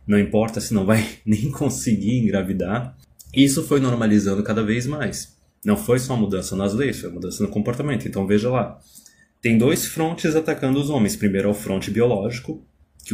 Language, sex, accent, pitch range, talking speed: Portuguese, male, Brazilian, 95-125 Hz, 185 wpm